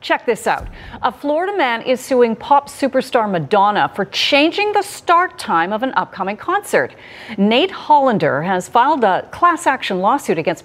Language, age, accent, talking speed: English, 40-59, American, 165 wpm